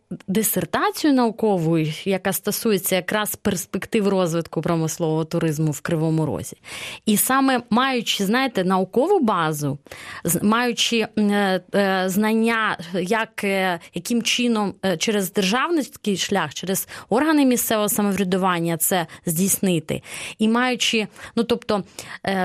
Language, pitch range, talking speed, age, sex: Ukrainian, 185-235 Hz, 105 wpm, 20-39, female